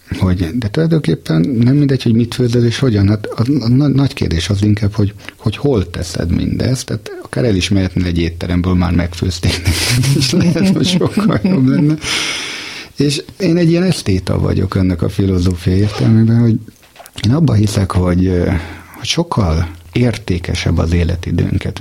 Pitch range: 85-115 Hz